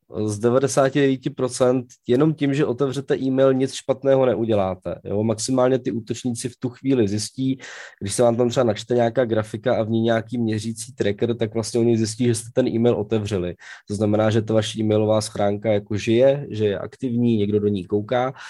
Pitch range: 105-130 Hz